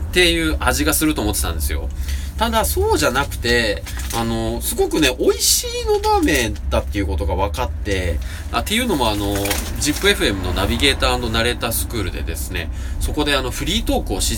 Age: 20-39